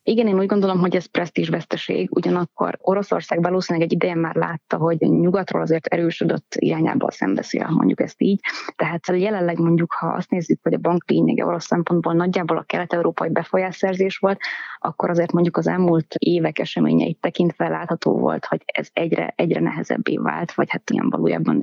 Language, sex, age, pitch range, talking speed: Hungarian, female, 20-39, 170-195 Hz, 165 wpm